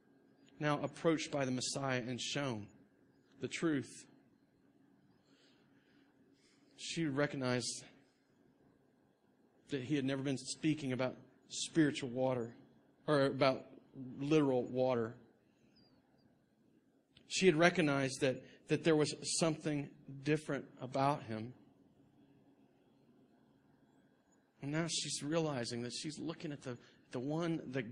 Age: 40-59